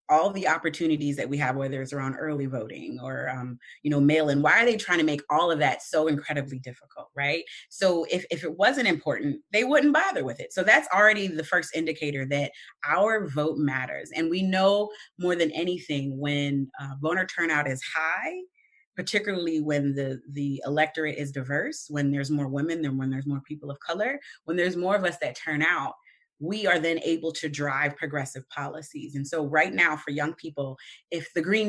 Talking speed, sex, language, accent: 200 wpm, female, English, American